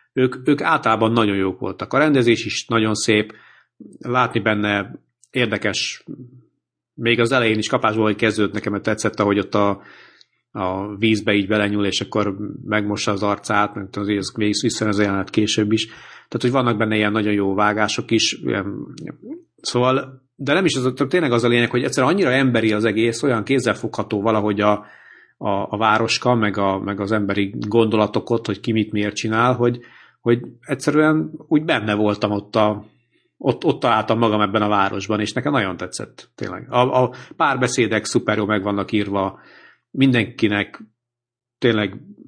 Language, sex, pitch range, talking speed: Hungarian, male, 100-120 Hz, 155 wpm